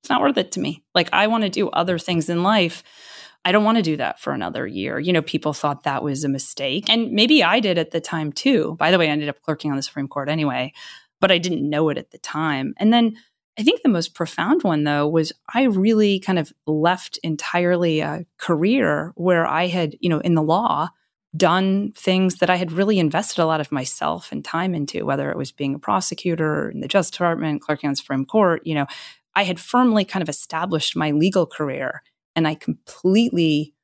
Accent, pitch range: American, 155-200 Hz